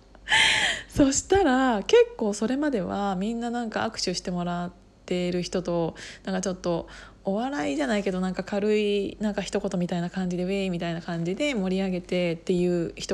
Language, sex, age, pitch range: Japanese, female, 20-39, 185-240 Hz